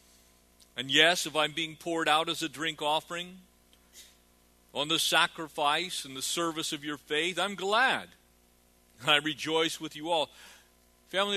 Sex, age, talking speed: male, 50-69, 155 wpm